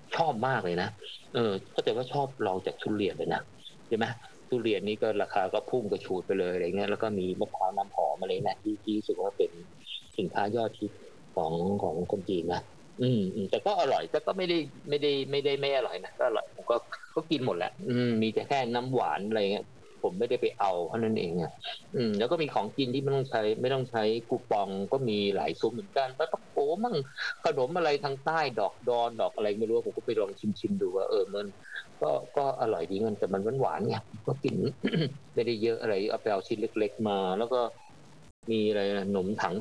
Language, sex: Thai, male